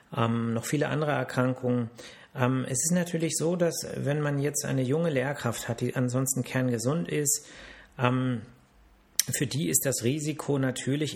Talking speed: 155 wpm